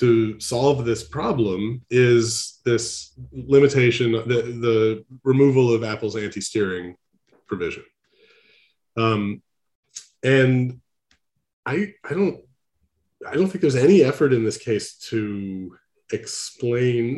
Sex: male